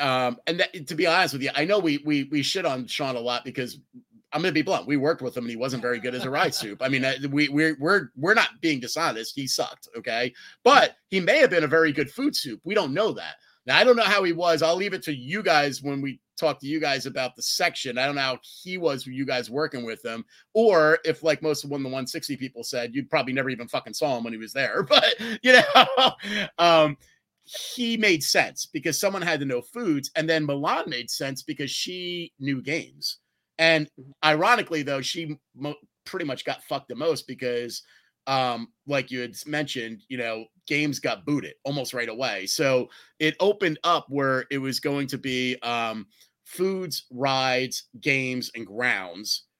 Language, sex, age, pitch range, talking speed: English, male, 30-49, 125-160 Hz, 215 wpm